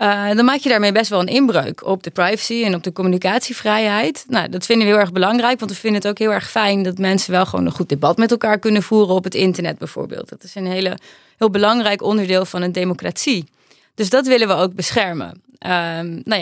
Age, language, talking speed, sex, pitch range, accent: 20-39, Dutch, 235 wpm, female, 180-225 Hz, Dutch